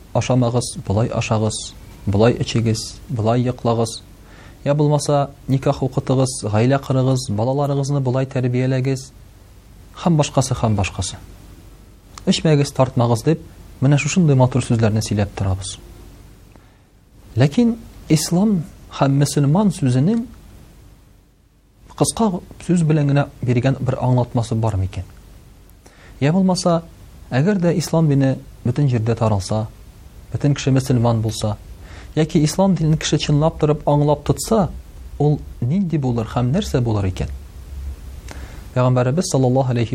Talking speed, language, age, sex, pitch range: 90 wpm, Russian, 40-59, male, 100-140 Hz